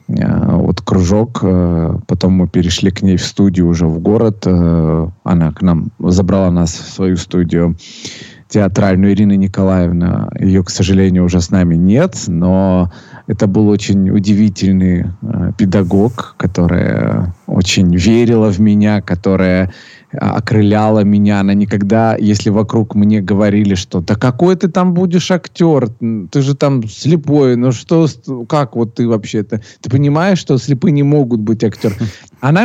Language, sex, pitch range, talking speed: Russian, male, 95-120 Hz, 140 wpm